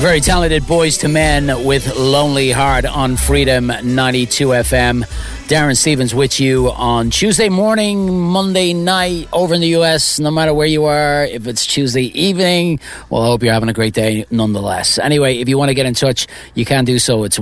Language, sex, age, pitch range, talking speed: English, male, 30-49, 110-150 Hz, 195 wpm